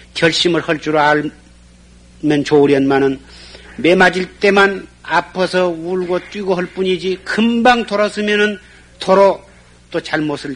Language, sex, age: Korean, male, 50-69